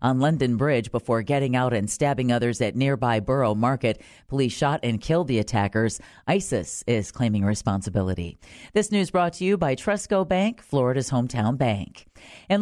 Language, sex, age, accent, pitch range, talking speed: English, female, 40-59, American, 120-160 Hz, 165 wpm